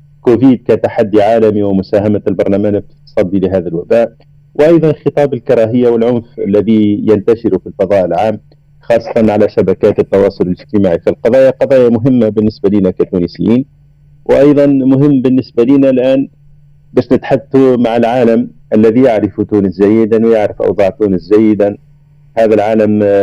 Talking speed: 125 wpm